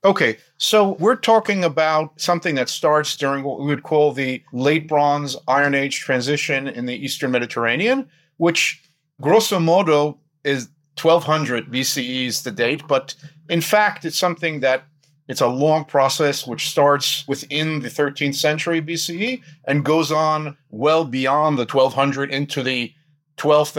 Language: English